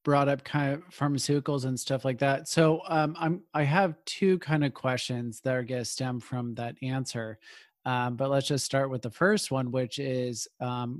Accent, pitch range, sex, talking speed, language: American, 125-145 Hz, male, 205 wpm, English